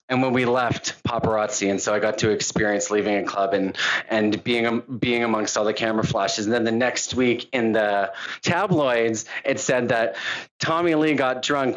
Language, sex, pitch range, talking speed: English, male, 105-135 Hz, 200 wpm